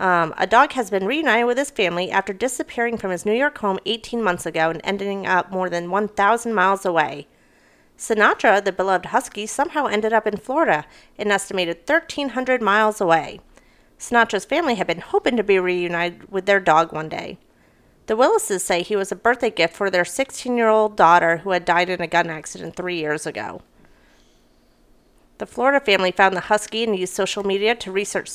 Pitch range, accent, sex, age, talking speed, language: 180-230 Hz, American, female, 40-59, 185 wpm, English